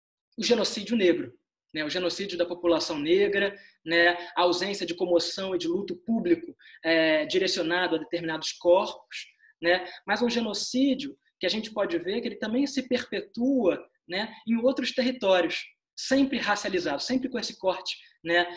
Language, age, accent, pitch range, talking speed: Portuguese, 20-39, Brazilian, 175-255 Hz, 155 wpm